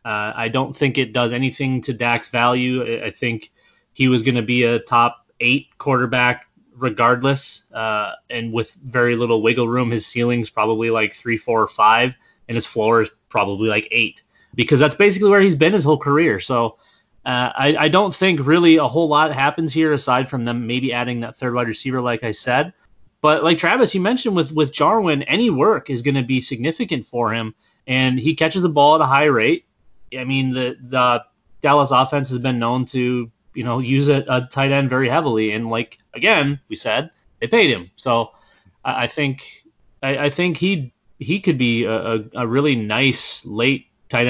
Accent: American